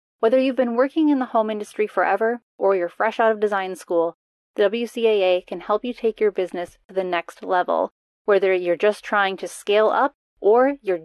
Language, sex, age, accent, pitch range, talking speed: English, female, 30-49, American, 205-260 Hz, 200 wpm